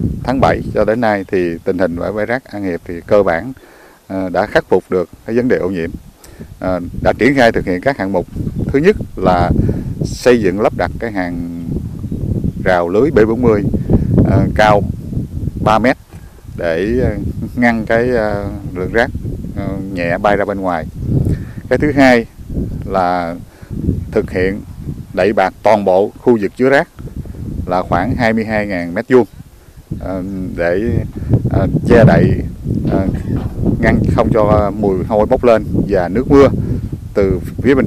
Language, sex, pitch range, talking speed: Vietnamese, male, 90-115 Hz, 150 wpm